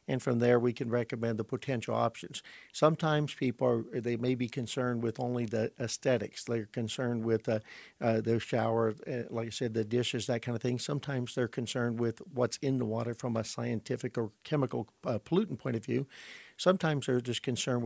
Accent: American